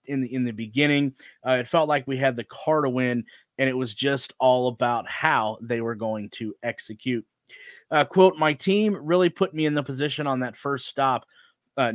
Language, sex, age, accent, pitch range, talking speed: English, male, 30-49, American, 120-150 Hz, 210 wpm